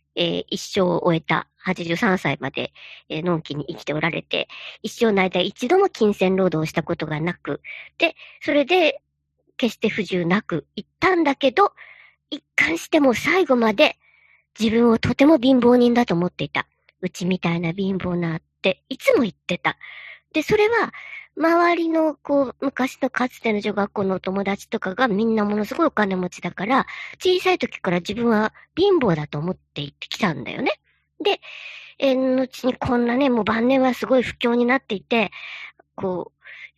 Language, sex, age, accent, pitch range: Japanese, male, 40-59, native, 175-260 Hz